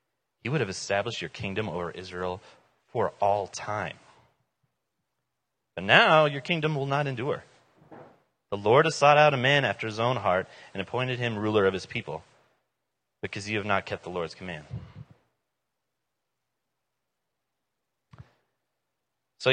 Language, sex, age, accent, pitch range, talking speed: English, male, 30-49, American, 100-135 Hz, 140 wpm